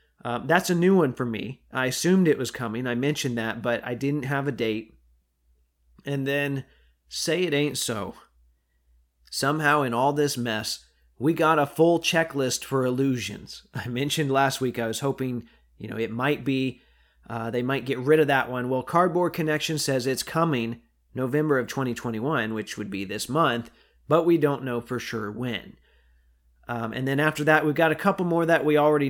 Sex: male